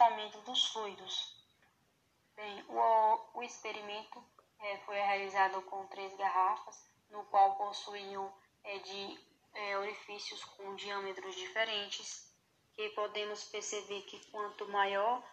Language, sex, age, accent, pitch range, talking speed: Portuguese, female, 10-29, Brazilian, 195-215 Hz, 115 wpm